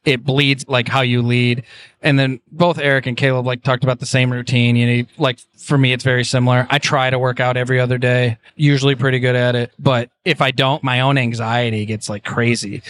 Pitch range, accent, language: 125-145 Hz, American, English